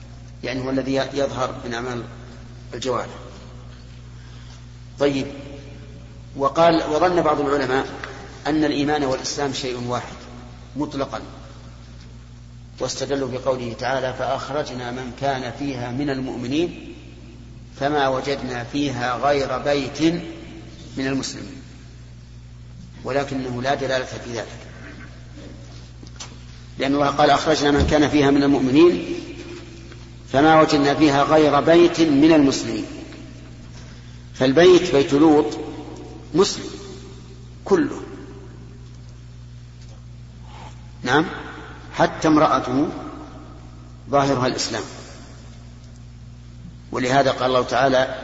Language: Arabic